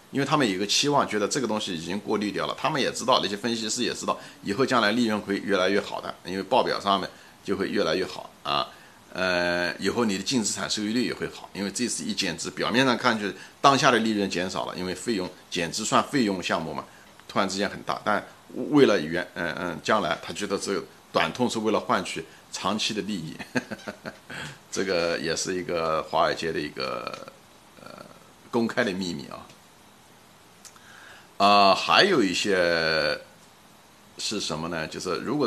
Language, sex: Chinese, male